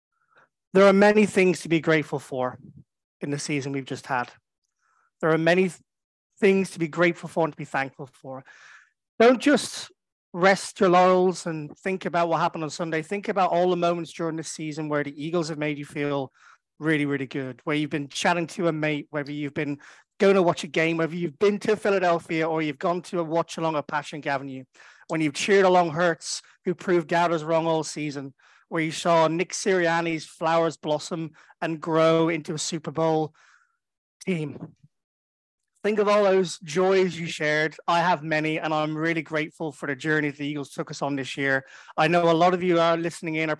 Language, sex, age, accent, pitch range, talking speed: English, male, 30-49, British, 150-180 Hz, 200 wpm